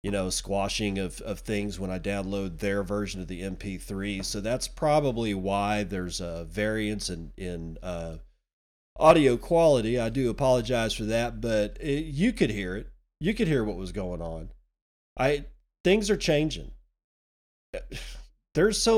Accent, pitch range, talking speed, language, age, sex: American, 100-145 Hz, 160 wpm, English, 40-59, male